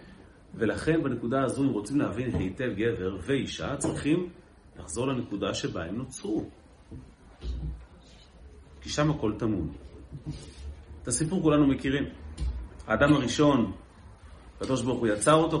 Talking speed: 115 wpm